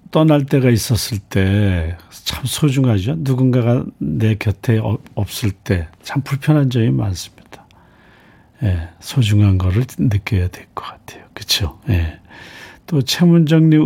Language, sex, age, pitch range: Korean, male, 50-69, 105-135 Hz